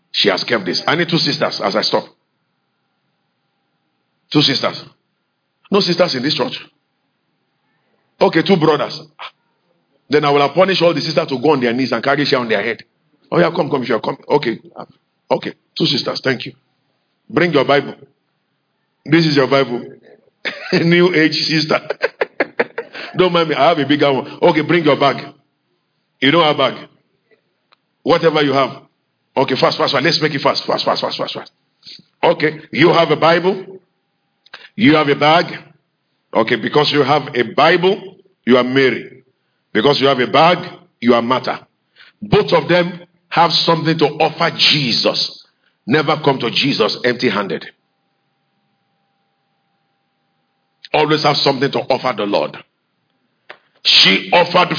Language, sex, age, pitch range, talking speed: English, male, 50-69, 140-175 Hz, 155 wpm